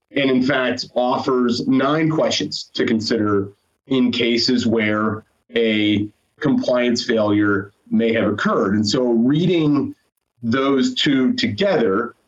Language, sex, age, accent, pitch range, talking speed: English, male, 30-49, American, 100-125 Hz, 110 wpm